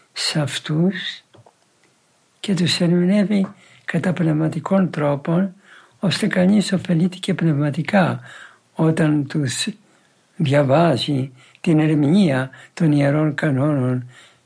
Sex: male